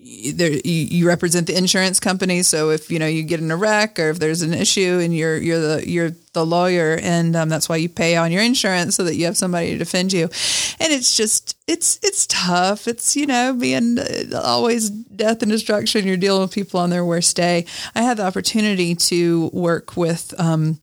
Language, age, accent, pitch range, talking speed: English, 30-49, American, 160-200 Hz, 210 wpm